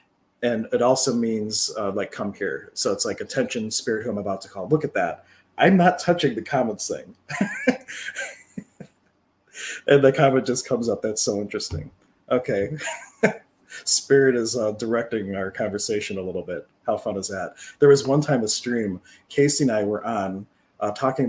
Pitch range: 105-140 Hz